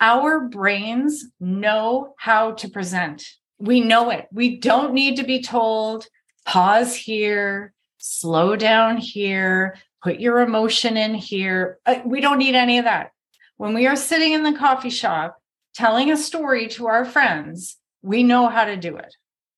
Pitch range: 195-260 Hz